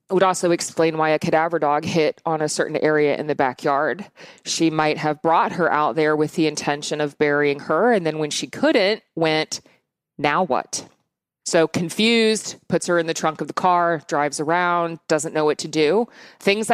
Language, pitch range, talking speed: English, 155-185 Hz, 195 wpm